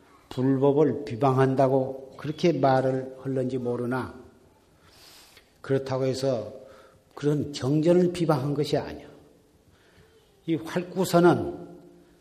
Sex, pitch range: male, 130-170 Hz